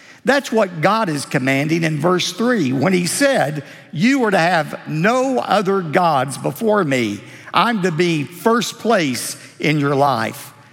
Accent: American